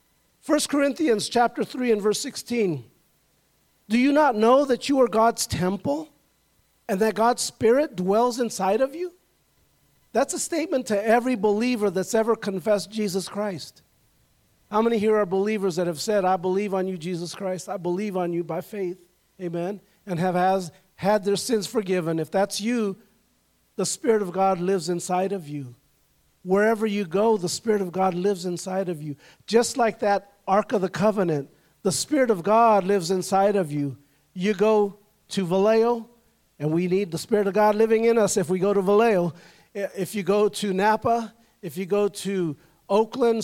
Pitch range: 185-230 Hz